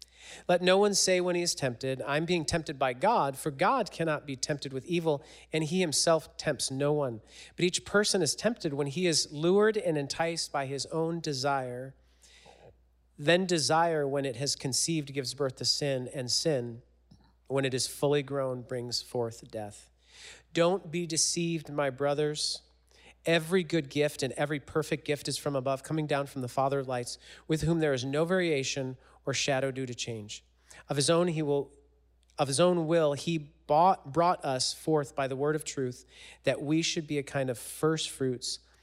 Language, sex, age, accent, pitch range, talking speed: English, male, 40-59, American, 125-160 Hz, 190 wpm